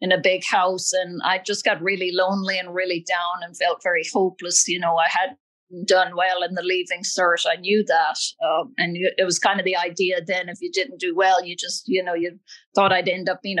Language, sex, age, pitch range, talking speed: English, female, 50-69, 180-205 Hz, 240 wpm